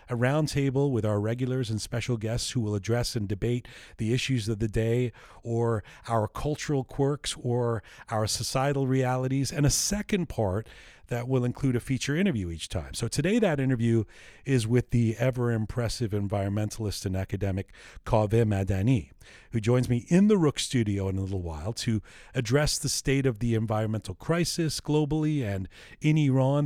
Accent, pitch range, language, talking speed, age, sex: American, 110-135 Hz, English, 170 wpm, 40-59, male